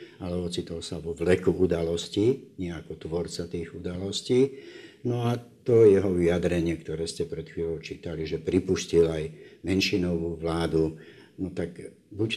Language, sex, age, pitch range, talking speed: Slovak, male, 60-79, 80-90 Hz, 135 wpm